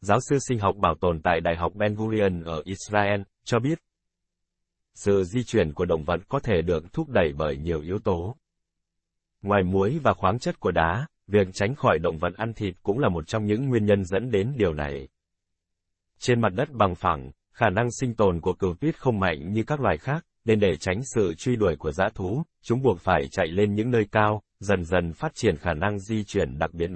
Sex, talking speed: male, 225 wpm